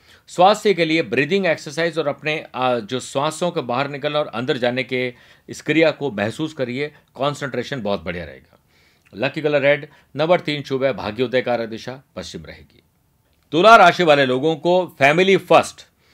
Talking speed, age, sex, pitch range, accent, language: 165 wpm, 50-69, male, 125-160 Hz, native, Hindi